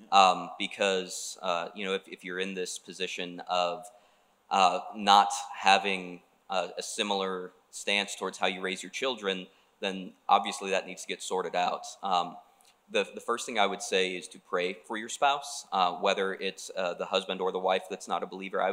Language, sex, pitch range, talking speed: English, male, 95-105 Hz, 195 wpm